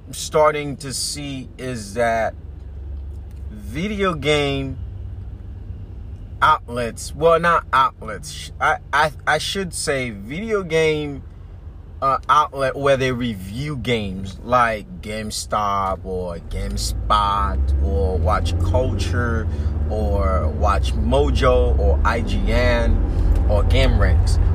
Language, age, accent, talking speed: English, 30-49, American, 95 wpm